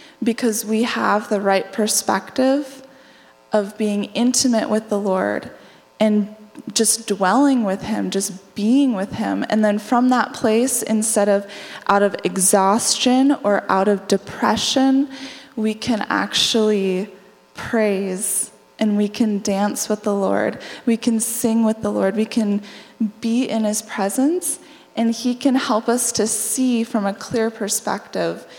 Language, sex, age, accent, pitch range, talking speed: English, female, 20-39, American, 195-235 Hz, 145 wpm